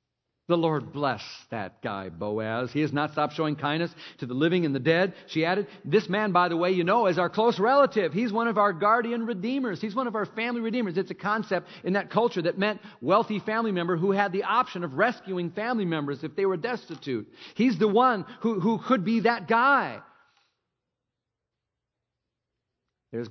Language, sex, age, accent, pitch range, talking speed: English, male, 50-69, American, 135-195 Hz, 195 wpm